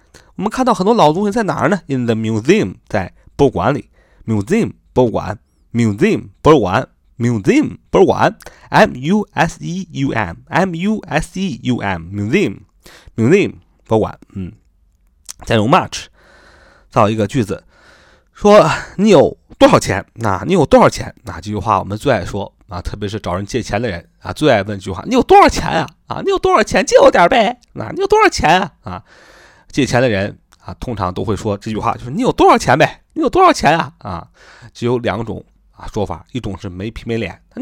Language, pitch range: Chinese, 100-150 Hz